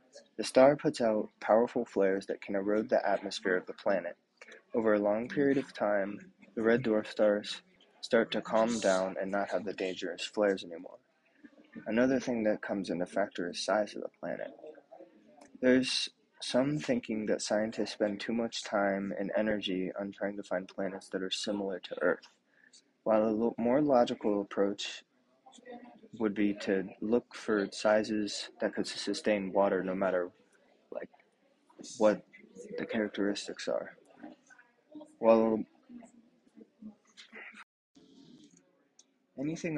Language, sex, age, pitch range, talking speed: Arabic, male, 20-39, 100-130 Hz, 140 wpm